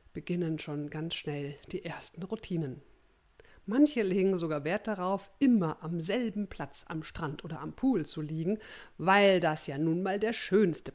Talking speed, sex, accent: 165 wpm, female, German